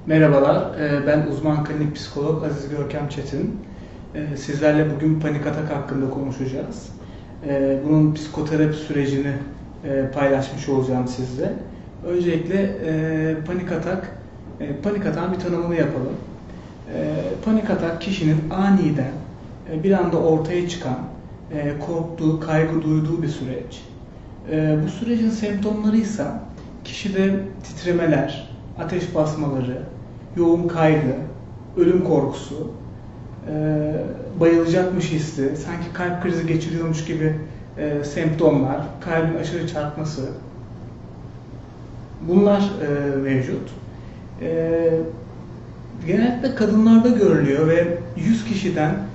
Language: Turkish